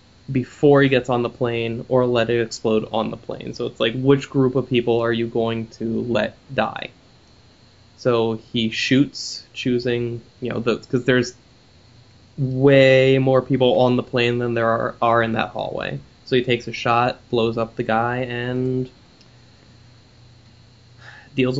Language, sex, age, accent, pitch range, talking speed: English, male, 10-29, American, 120-140 Hz, 160 wpm